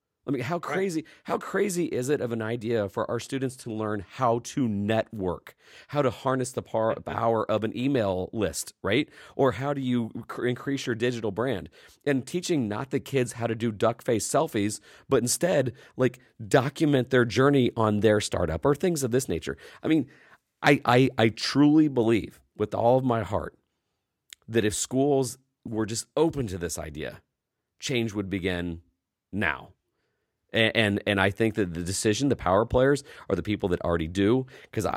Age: 40-59